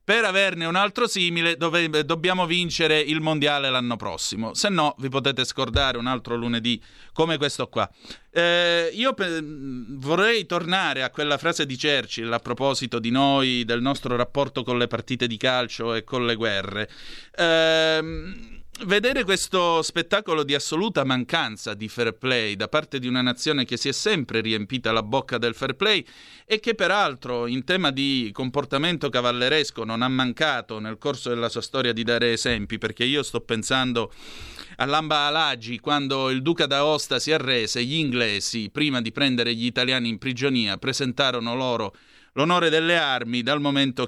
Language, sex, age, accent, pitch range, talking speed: Italian, male, 30-49, native, 120-155 Hz, 160 wpm